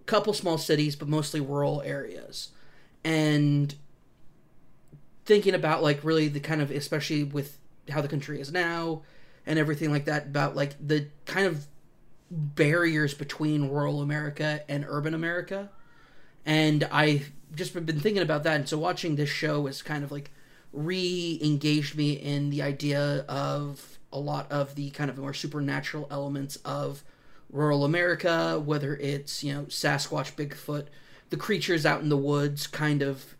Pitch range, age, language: 145-155 Hz, 30-49, English